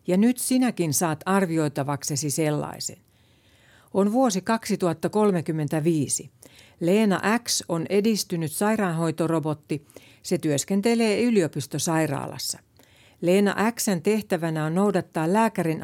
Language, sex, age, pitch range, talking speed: Finnish, female, 60-79, 150-195 Hz, 85 wpm